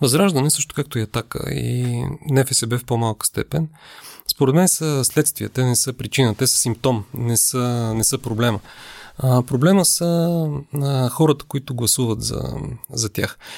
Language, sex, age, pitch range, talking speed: Bulgarian, male, 30-49, 115-140 Hz, 165 wpm